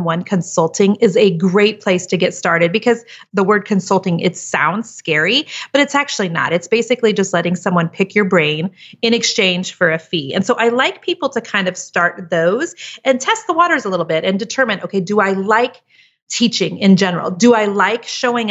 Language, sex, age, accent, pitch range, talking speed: English, female, 30-49, American, 175-225 Hz, 205 wpm